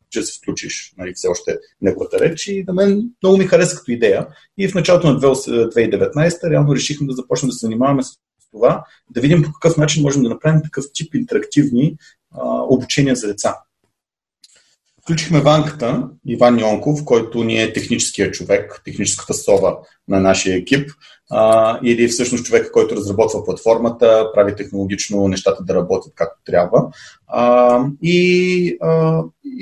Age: 30-49